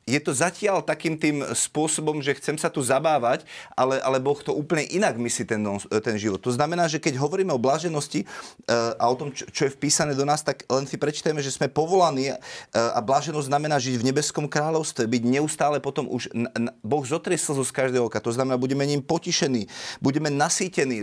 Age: 30-49